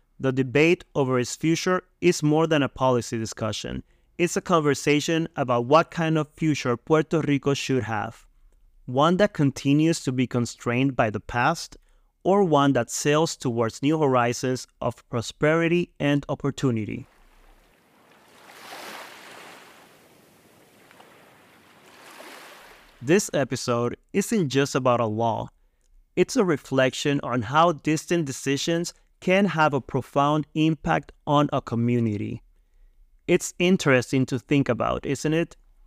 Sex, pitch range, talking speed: male, 120-160 Hz, 120 wpm